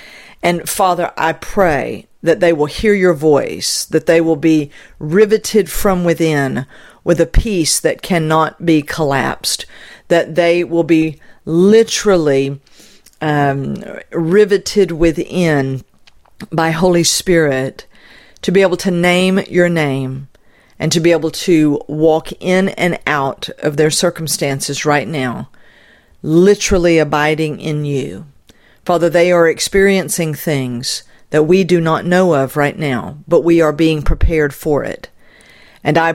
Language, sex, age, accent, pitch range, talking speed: English, female, 50-69, American, 150-180 Hz, 135 wpm